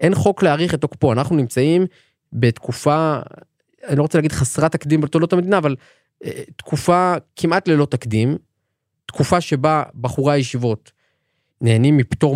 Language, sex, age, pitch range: Hebrew, male, 20-39, 115-150 Hz